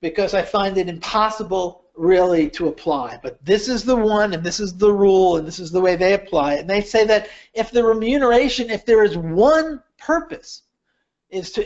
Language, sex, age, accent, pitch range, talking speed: English, male, 50-69, American, 185-255 Hz, 205 wpm